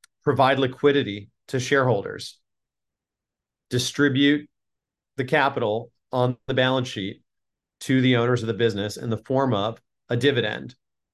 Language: English